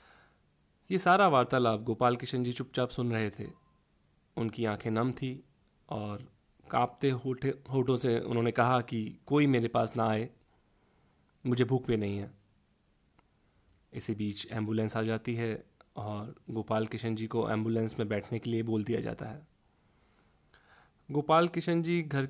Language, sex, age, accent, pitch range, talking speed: Hindi, male, 30-49, native, 110-130 Hz, 150 wpm